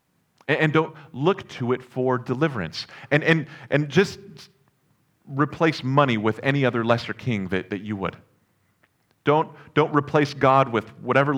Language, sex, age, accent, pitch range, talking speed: English, male, 40-59, American, 125-160 Hz, 150 wpm